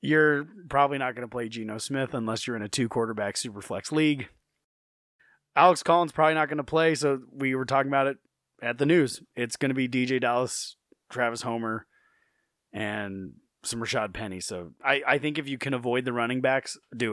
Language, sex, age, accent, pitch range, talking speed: English, male, 30-49, American, 115-155 Hz, 200 wpm